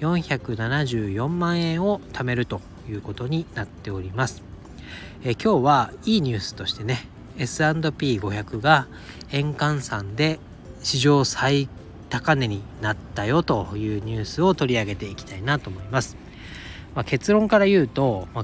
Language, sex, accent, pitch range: Japanese, male, native, 105-140 Hz